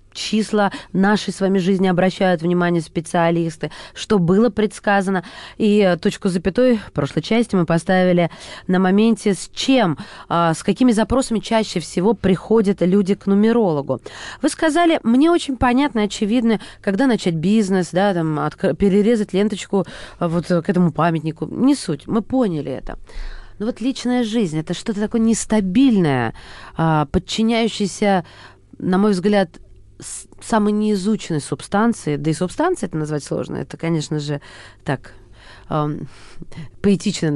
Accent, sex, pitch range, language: native, female, 160-220 Hz, Russian